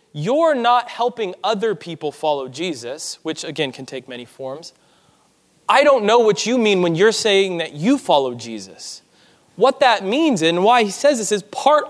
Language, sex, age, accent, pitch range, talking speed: English, male, 20-39, American, 165-235 Hz, 180 wpm